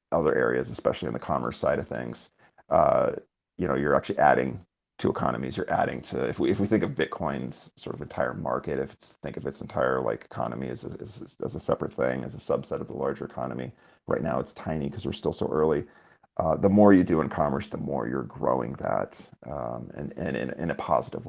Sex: male